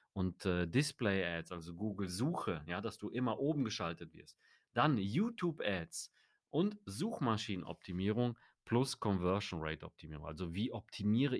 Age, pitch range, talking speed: 30-49, 90-115 Hz, 135 wpm